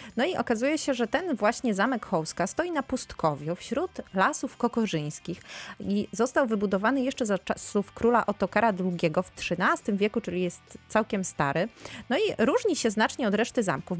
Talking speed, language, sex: 165 wpm, Polish, female